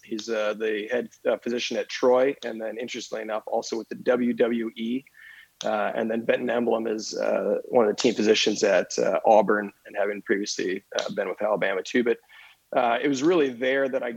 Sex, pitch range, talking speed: male, 110-130 Hz, 200 wpm